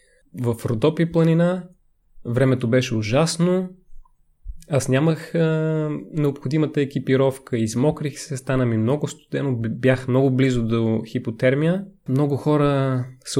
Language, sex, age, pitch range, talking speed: Bulgarian, male, 20-39, 120-150 Hz, 110 wpm